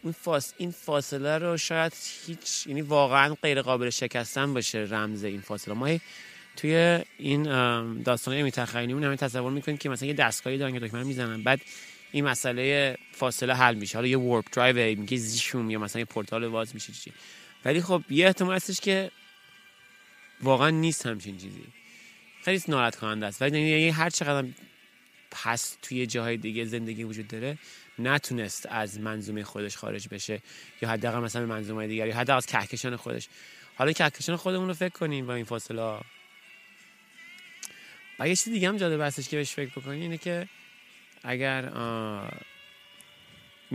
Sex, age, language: male, 30-49, Persian